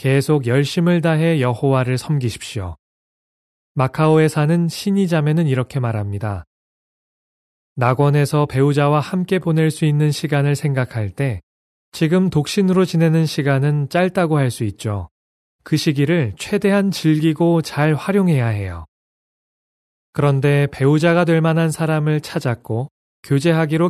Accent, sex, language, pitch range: native, male, Korean, 120-160 Hz